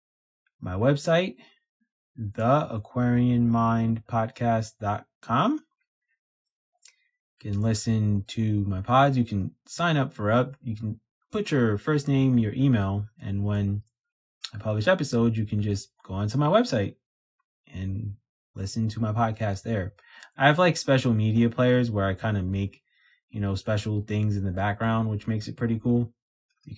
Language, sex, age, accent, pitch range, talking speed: English, male, 20-39, American, 100-130 Hz, 150 wpm